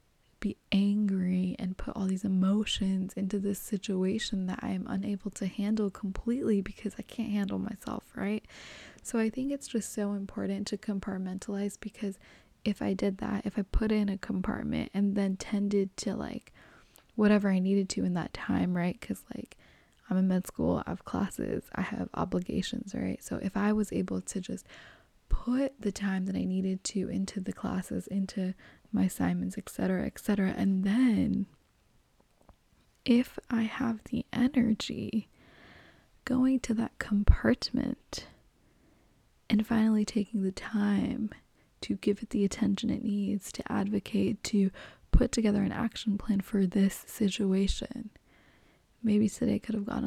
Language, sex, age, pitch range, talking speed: English, female, 20-39, 195-225 Hz, 160 wpm